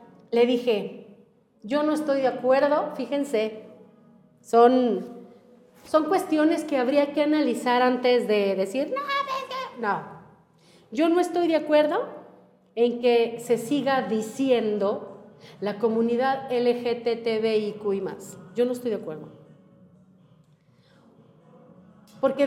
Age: 40-59